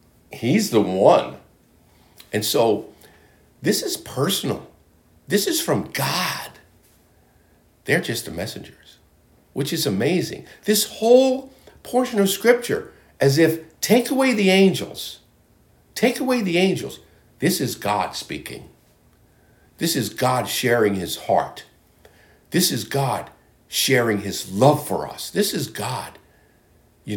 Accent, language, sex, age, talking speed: American, English, male, 60-79, 125 wpm